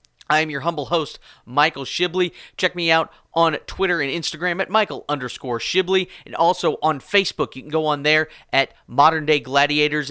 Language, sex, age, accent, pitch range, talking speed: English, male, 30-49, American, 125-160 Hz, 185 wpm